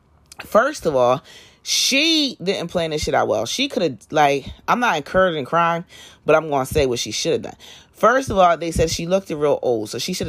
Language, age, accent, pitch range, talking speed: English, 30-49, American, 115-170 Hz, 235 wpm